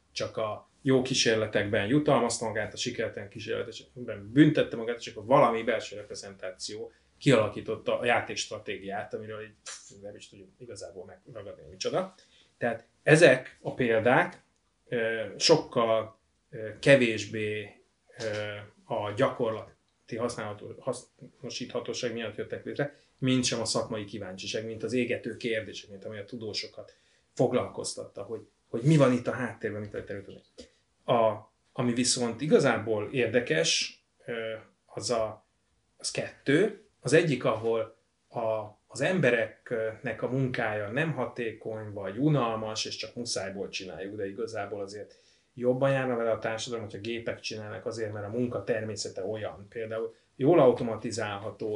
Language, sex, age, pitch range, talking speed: Hungarian, male, 30-49, 110-130 Hz, 125 wpm